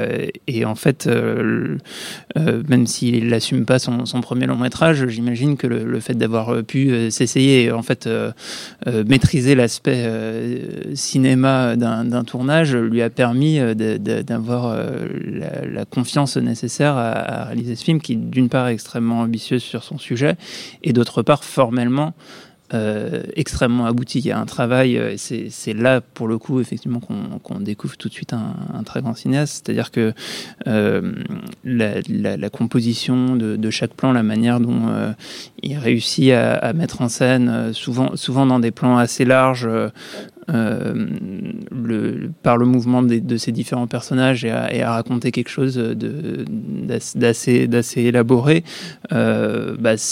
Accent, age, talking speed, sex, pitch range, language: French, 20-39, 175 wpm, male, 115-130 Hz, French